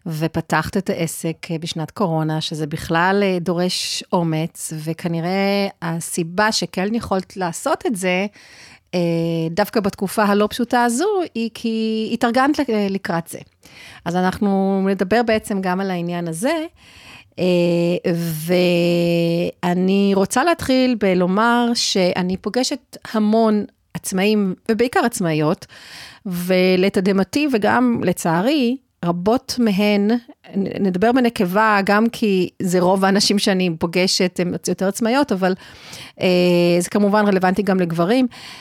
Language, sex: Hebrew, female